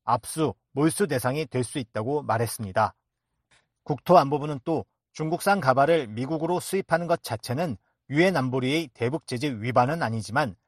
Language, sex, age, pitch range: Korean, male, 40-59, 125-160 Hz